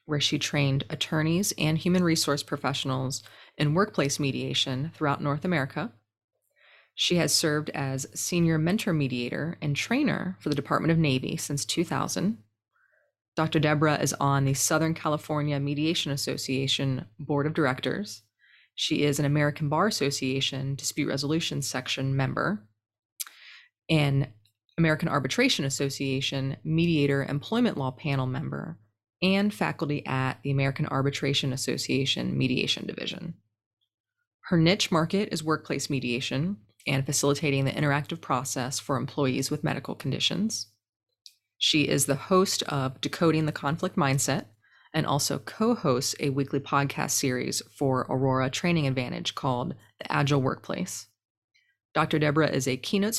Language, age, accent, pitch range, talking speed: English, 20-39, American, 135-160 Hz, 130 wpm